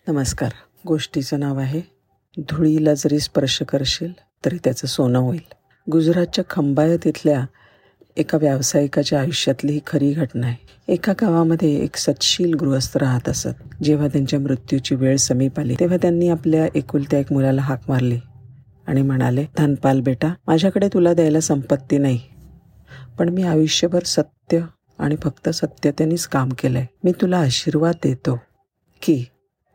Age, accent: 50-69, native